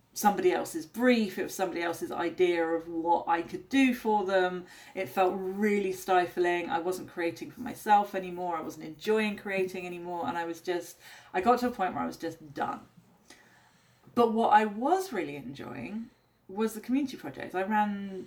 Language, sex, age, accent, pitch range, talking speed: English, female, 30-49, British, 185-260 Hz, 185 wpm